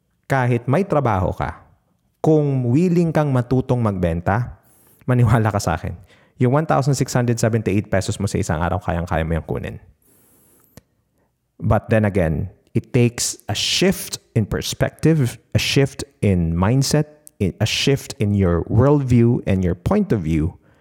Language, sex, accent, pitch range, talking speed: Filipino, male, native, 95-125 Hz, 135 wpm